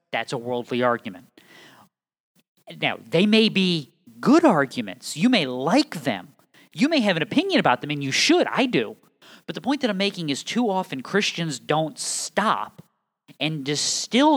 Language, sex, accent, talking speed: English, male, American, 165 wpm